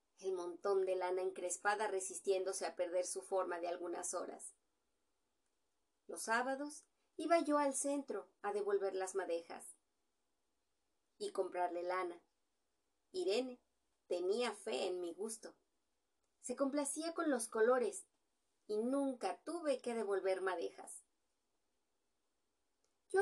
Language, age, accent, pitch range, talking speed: Spanish, 30-49, Mexican, 185-290 Hz, 115 wpm